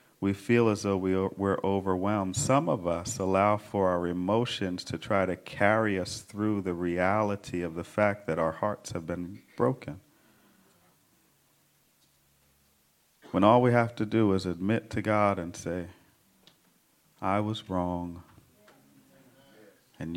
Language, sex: English, male